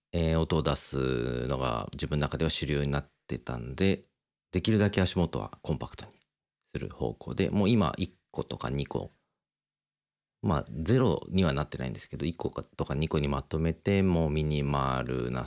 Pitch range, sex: 70-90 Hz, male